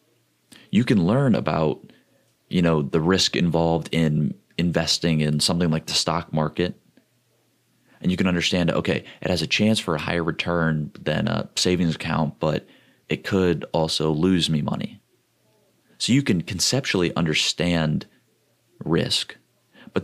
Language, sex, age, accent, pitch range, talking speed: English, male, 30-49, American, 80-100 Hz, 145 wpm